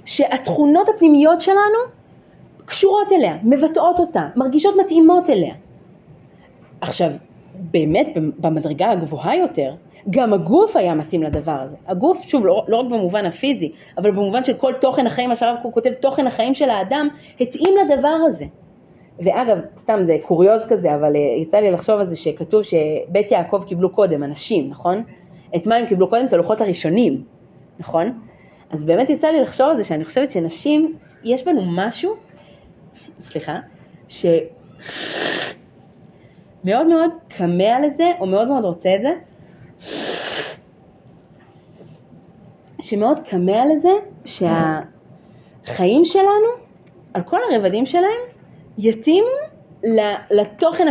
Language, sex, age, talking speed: Hebrew, female, 30-49, 125 wpm